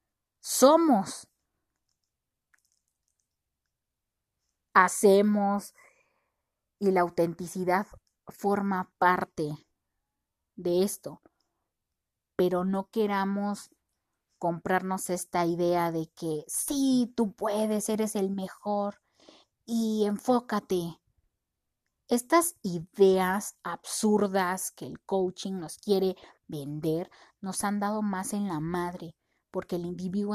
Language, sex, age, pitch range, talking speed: Spanish, female, 30-49, 180-215 Hz, 85 wpm